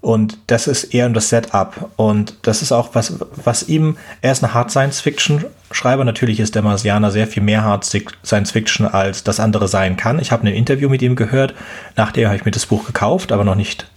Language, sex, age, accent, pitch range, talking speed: German, male, 30-49, German, 105-125 Hz, 210 wpm